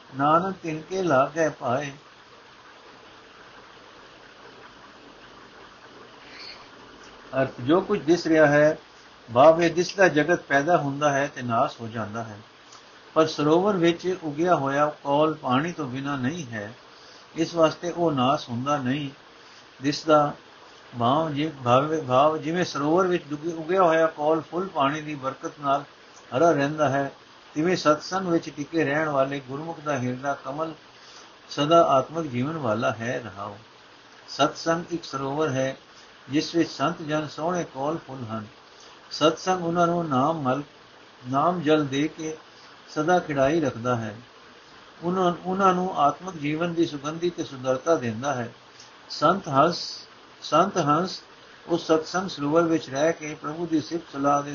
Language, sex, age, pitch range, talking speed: Punjabi, male, 60-79, 135-165 Hz, 100 wpm